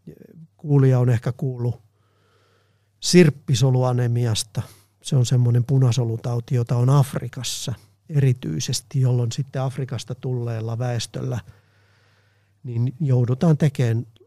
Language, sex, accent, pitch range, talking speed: Finnish, male, native, 110-135 Hz, 90 wpm